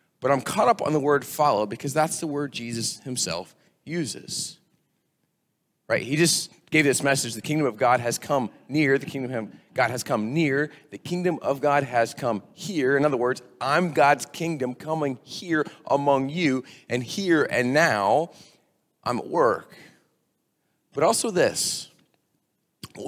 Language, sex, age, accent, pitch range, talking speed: English, male, 30-49, American, 125-160 Hz, 165 wpm